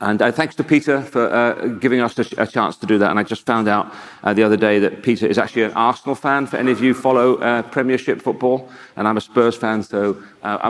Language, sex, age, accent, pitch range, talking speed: English, male, 40-59, British, 110-135 Hz, 270 wpm